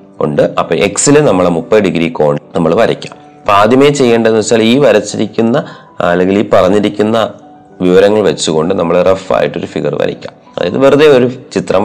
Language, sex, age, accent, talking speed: Malayalam, male, 30-49, native, 150 wpm